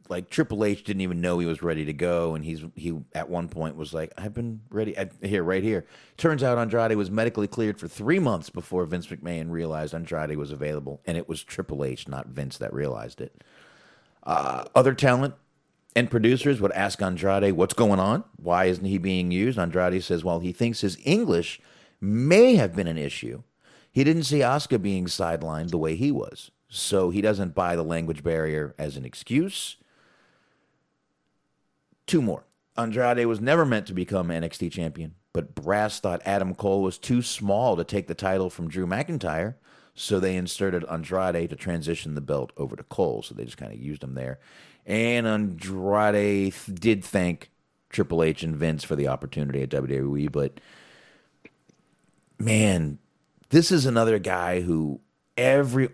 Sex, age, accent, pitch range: male, 40-59, American, 80-110 Hz